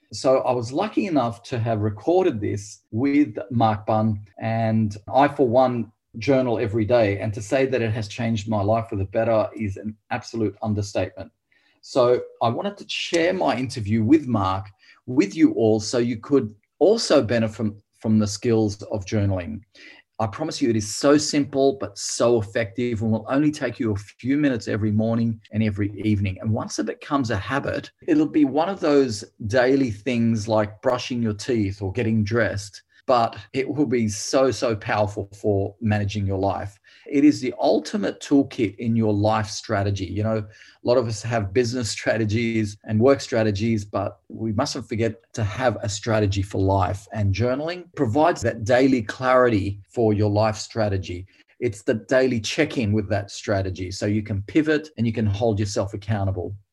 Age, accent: 30-49, Australian